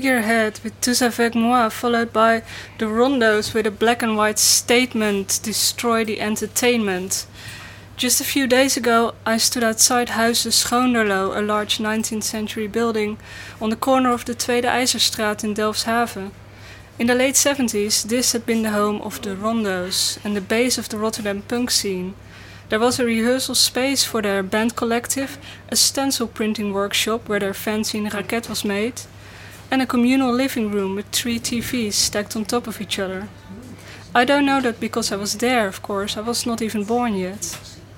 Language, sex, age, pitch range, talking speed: English, female, 20-39, 205-240 Hz, 175 wpm